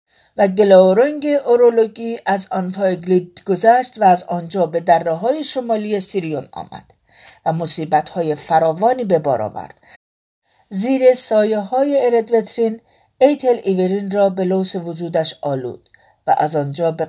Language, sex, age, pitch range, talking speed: Persian, female, 50-69, 160-215 Hz, 125 wpm